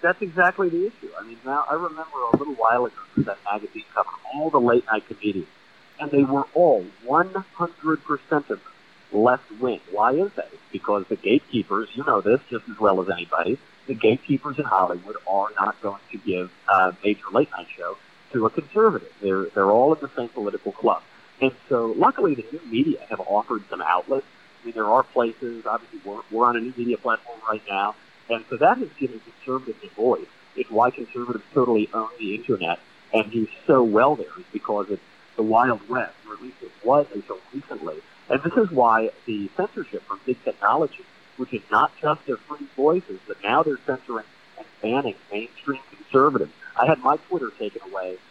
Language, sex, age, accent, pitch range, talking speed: English, male, 50-69, American, 110-170 Hz, 190 wpm